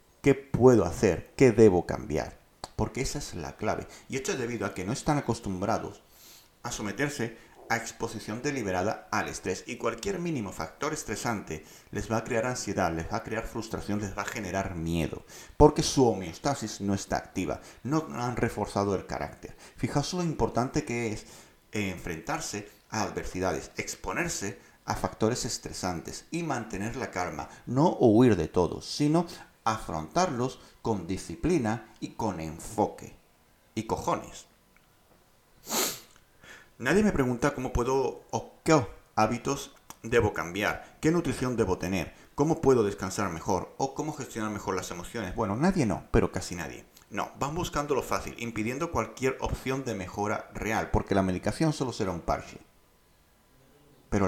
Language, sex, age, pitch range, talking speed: Spanish, male, 40-59, 95-135 Hz, 150 wpm